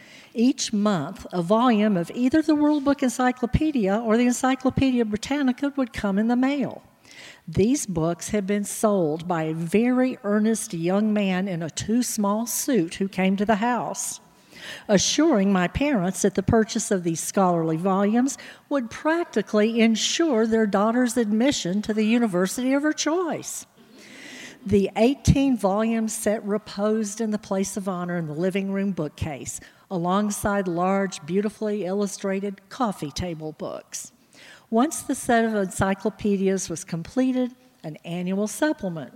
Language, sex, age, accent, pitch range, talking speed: English, female, 50-69, American, 185-235 Hz, 145 wpm